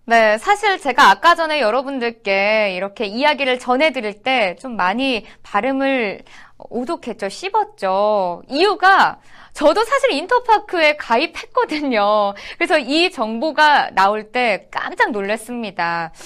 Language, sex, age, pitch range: Korean, female, 20-39, 225-345 Hz